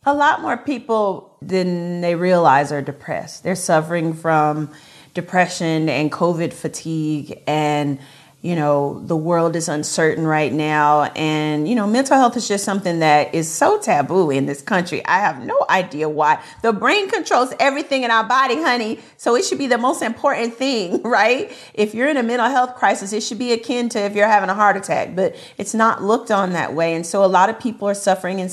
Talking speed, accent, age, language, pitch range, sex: 200 wpm, American, 40-59, English, 165-205 Hz, female